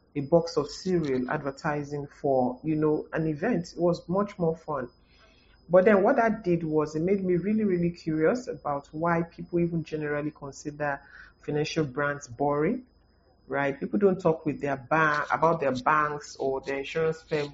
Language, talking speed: English, 170 wpm